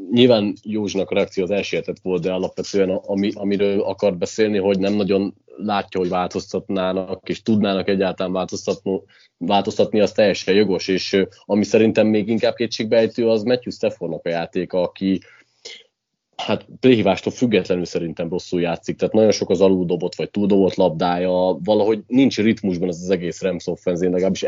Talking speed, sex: 145 wpm, male